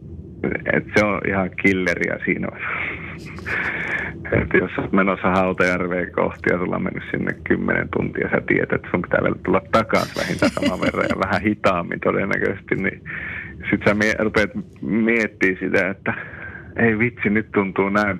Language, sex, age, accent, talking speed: Finnish, male, 50-69, native, 145 wpm